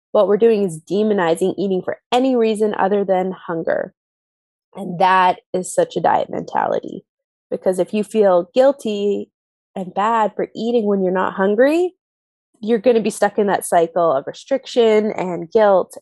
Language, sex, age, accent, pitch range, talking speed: English, female, 20-39, American, 180-235 Hz, 165 wpm